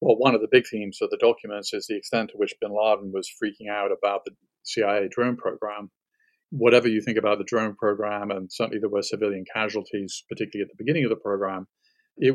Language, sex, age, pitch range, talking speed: English, male, 40-59, 105-115 Hz, 220 wpm